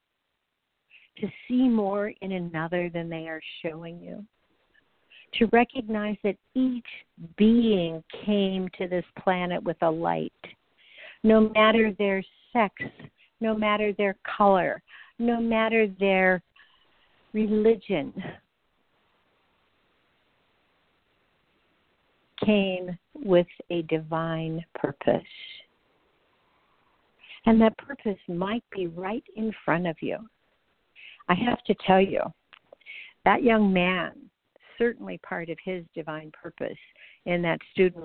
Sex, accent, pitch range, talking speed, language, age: female, American, 165-215 Hz, 105 wpm, English, 60-79